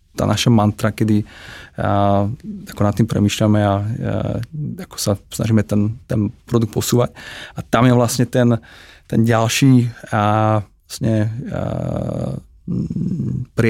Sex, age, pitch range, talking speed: male, 20-39, 105-115 Hz, 100 wpm